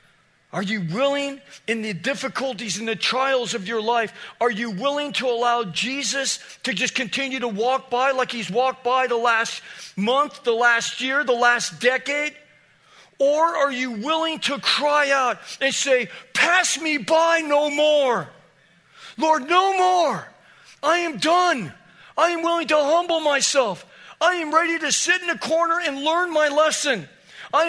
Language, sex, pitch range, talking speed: English, male, 230-305 Hz, 165 wpm